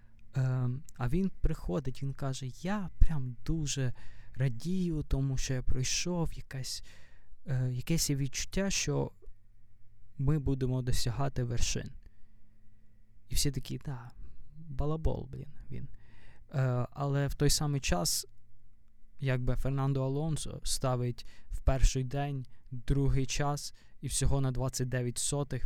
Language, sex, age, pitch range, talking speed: Ukrainian, male, 20-39, 115-135 Hz, 110 wpm